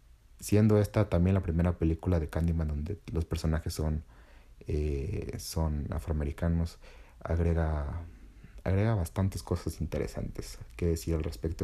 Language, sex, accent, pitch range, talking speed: Spanish, male, Mexican, 80-95 Hz, 125 wpm